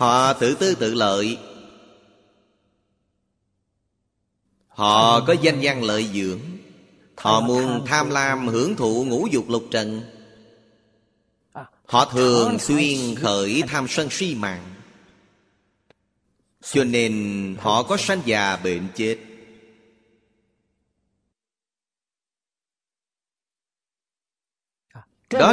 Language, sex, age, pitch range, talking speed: Vietnamese, male, 30-49, 105-135 Hz, 90 wpm